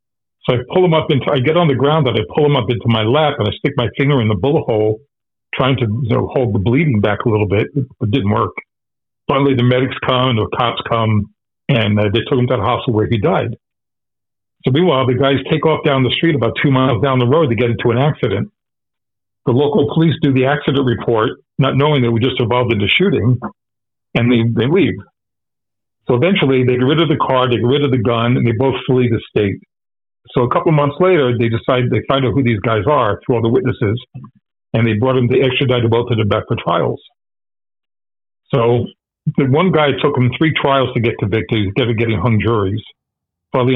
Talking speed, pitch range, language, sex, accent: 230 wpm, 115-135 Hz, English, male, American